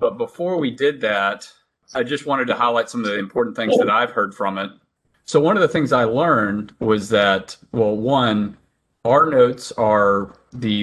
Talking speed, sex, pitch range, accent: 195 wpm, male, 100-120 Hz, American